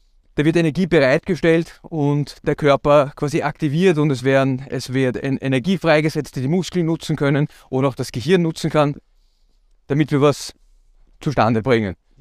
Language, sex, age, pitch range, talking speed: German, male, 30-49, 125-165 Hz, 150 wpm